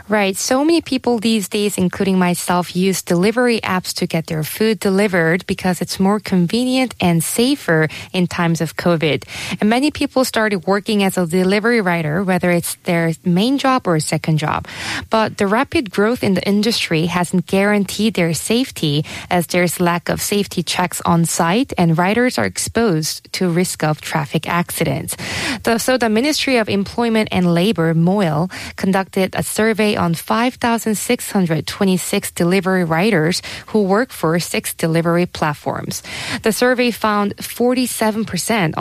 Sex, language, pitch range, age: female, Korean, 170-220 Hz, 20-39